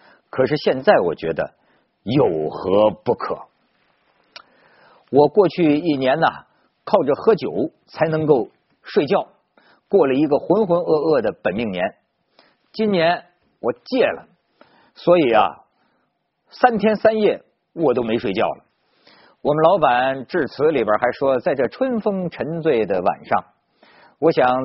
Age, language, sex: 50-69, Chinese, male